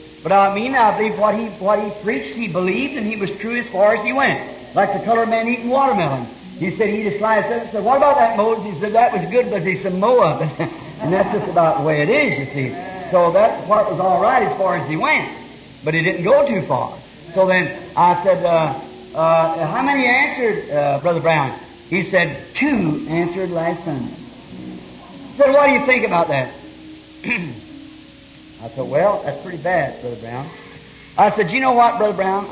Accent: American